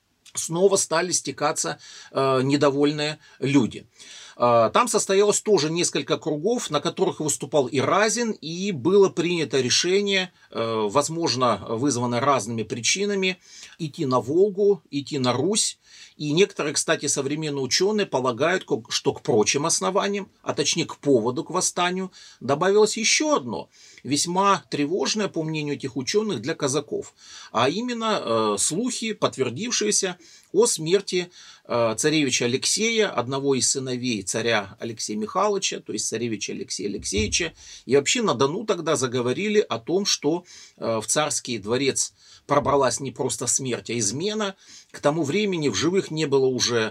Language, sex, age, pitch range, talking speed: Russian, male, 40-59, 130-195 Hz, 135 wpm